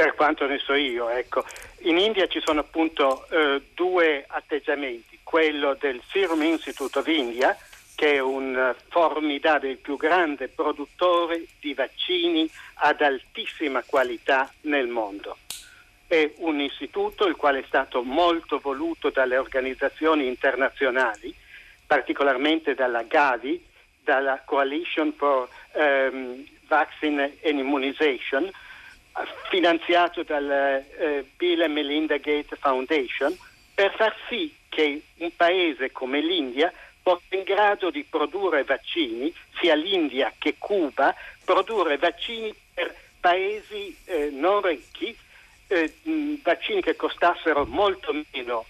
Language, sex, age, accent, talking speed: Italian, male, 50-69, native, 120 wpm